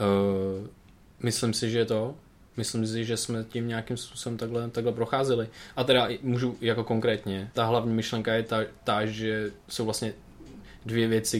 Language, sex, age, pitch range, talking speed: Czech, male, 20-39, 95-110 Hz, 160 wpm